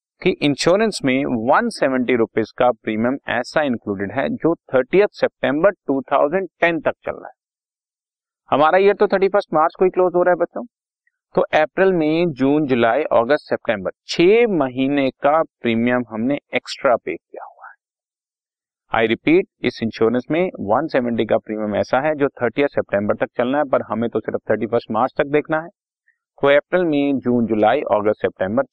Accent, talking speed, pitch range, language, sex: native, 110 wpm, 115-185 Hz, Hindi, male